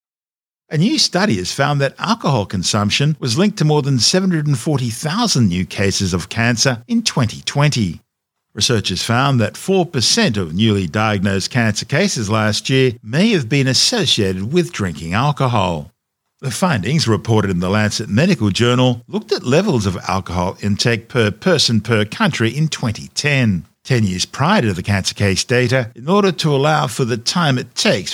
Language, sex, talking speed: English, male, 160 wpm